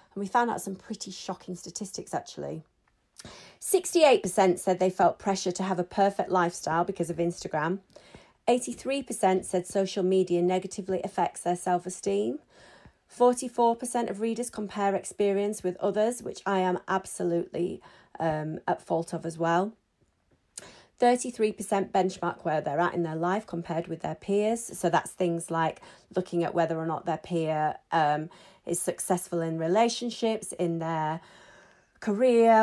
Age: 30-49